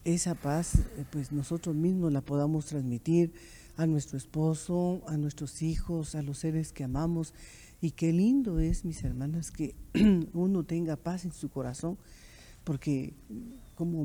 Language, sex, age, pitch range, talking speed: Spanish, female, 50-69, 150-175 Hz, 145 wpm